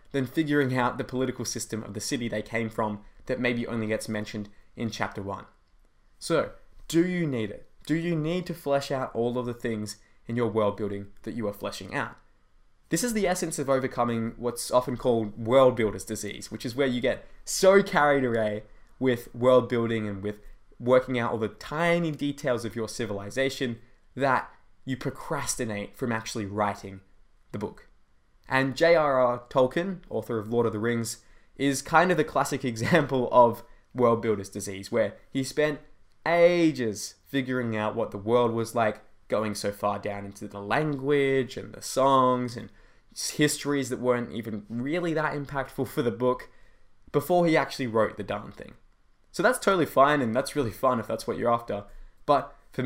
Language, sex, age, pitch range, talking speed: English, male, 20-39, 110-135 Hz, 180 wpm